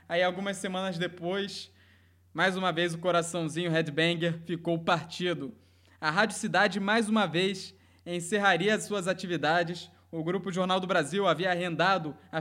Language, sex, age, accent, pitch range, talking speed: Portuguese, male, 20-39, Brazilian, 165-205 Hz, 145 wpm